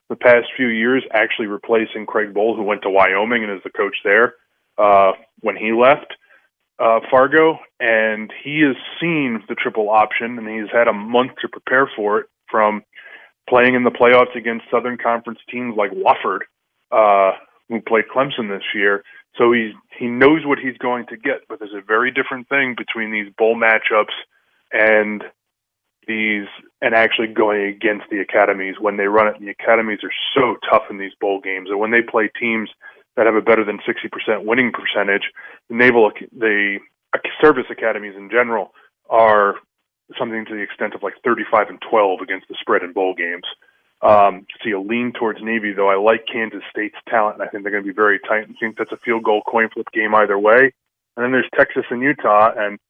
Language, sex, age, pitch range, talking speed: English, male, 20-39, 105-120 Hz, 195 wpm